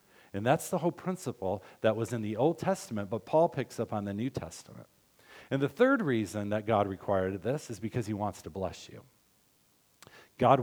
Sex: male